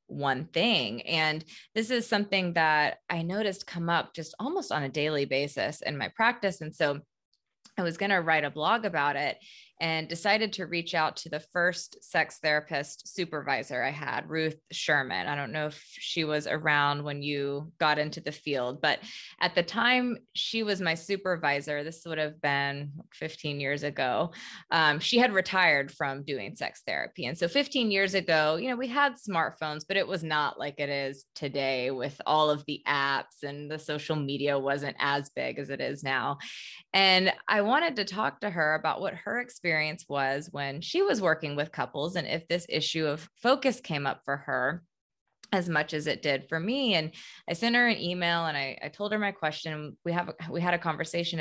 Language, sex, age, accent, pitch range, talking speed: English, female, 20-39, American, 145-195 Hz, 200 wpm